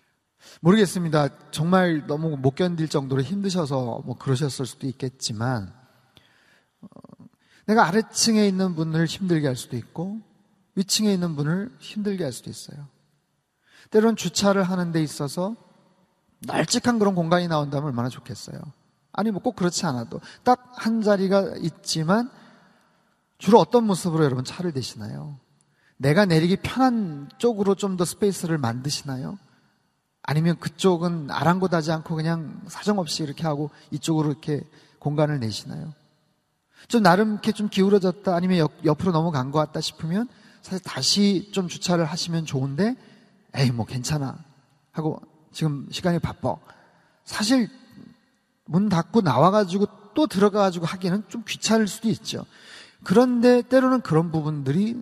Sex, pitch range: male, 150-205 Hz